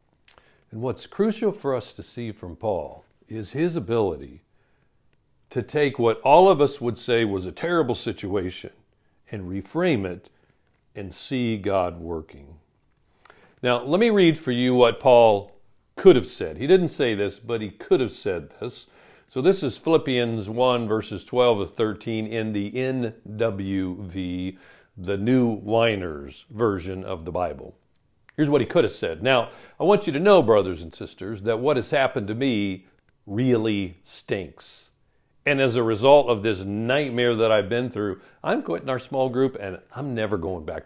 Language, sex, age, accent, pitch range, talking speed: English, male, 60-79, American, 95-130 Hz, 165 wpm